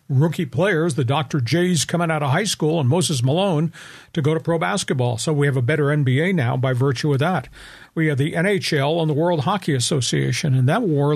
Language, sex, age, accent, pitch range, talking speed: English, male, 50-69, American, 140-170 Hz, 220 wpm